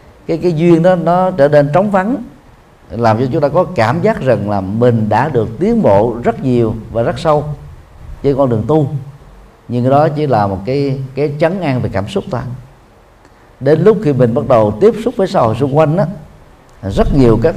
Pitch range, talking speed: 110-155 Hz, 210 wpm